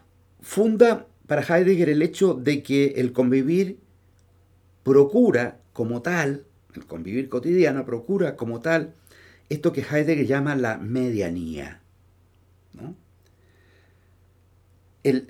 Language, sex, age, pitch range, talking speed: Spanish, male, 50-69, 95-135 Hz, 100 wpm